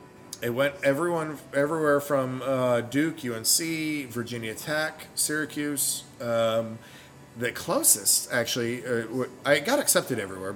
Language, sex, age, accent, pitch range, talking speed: English, male, 40-59, American, 110-135 Hz, 115 wpm